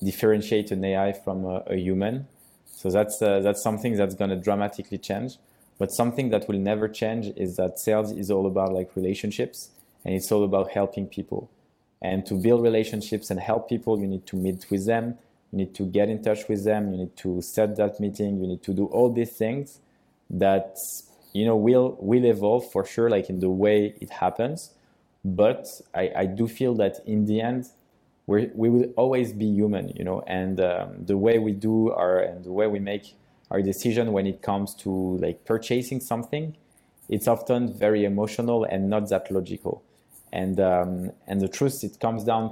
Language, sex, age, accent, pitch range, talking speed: English, male, 20-39, French, 95-110 Hz, 195 wpm